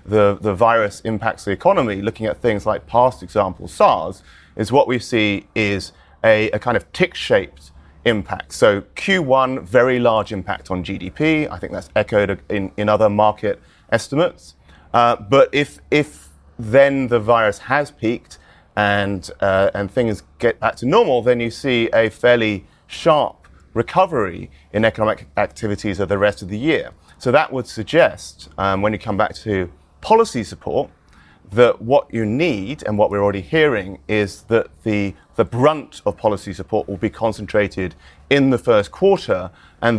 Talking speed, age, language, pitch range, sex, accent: 165 wpm, 30-49, English, 95-120 Hz, male, British